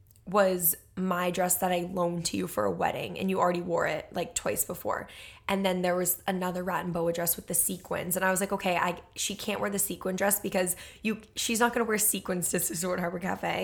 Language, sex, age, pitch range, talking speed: English, female, 20-39, 170-190 Hz, 240 wpm